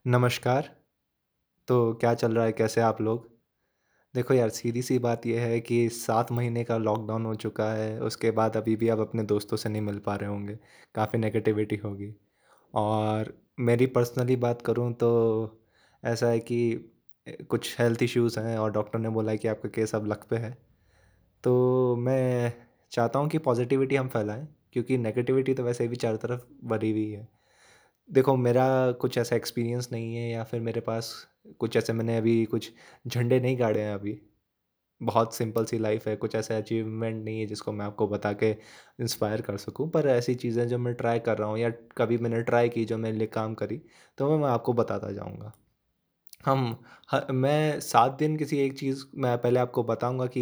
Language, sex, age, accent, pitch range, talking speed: Hindi, male, 20-39, native, 110-125 Hz, 190 wpm